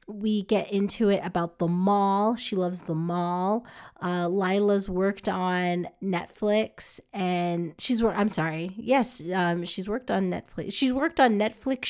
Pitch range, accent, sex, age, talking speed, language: 180-215 Hz, American, female, 30-49, 155 wpm, English